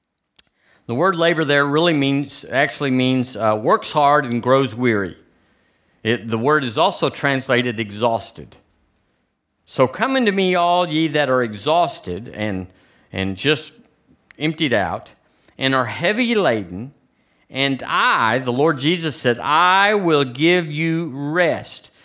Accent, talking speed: American, 135 wpm